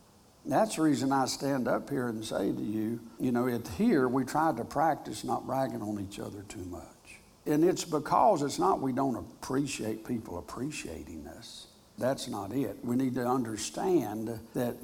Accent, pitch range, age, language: American, 110-135 Hz, 60-79, English